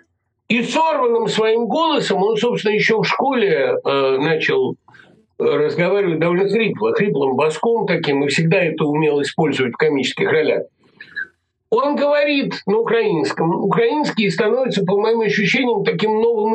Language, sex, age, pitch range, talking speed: Russian, male, 50-69, 185-245 Hz, 130 wpm